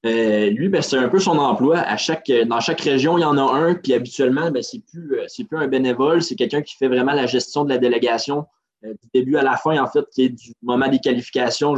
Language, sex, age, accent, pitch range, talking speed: French, male, 20-39, Canadian, 125-150 Hz, 270 wpm